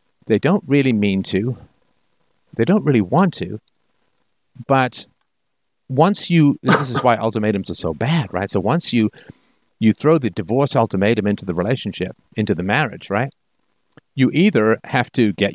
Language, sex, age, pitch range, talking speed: English, male, 50-69, 95-130 Hz, 160 wpm